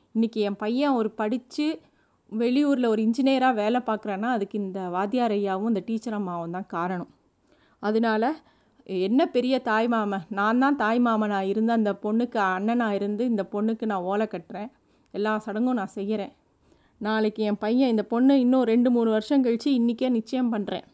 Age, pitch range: 30-49, 200-245 Hz